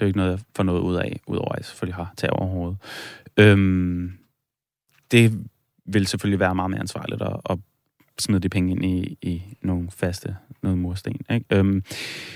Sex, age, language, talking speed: male, 30-49, Danish, 180 wpm